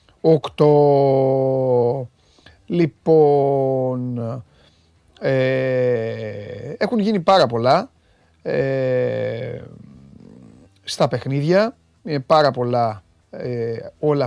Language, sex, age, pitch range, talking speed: Greek, male, 30-49, 120-155 Hz, 45 wpm